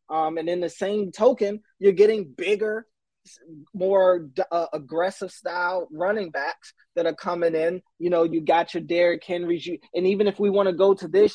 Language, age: English, 20-39